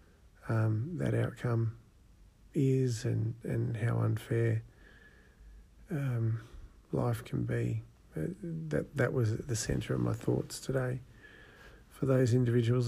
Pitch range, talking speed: 110-120 Hz, 110 wpm